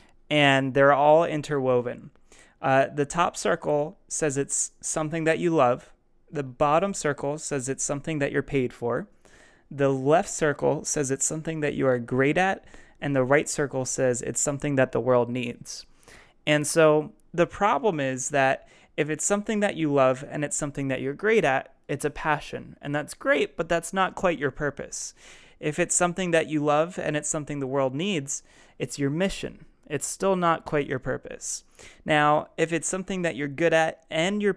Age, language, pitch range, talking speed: 20-39, English, 135-160 Hz, 185 wpm